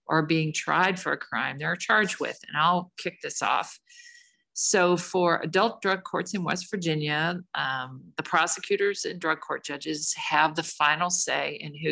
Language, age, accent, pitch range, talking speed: English, 50-69, American, 155-190 Hz, 175 wpm